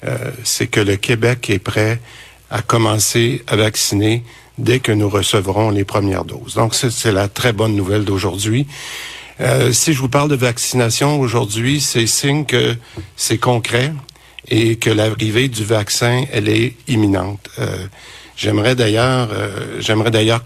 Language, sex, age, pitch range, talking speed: French, male, 50-69, 105-125 Hz, 155 wpm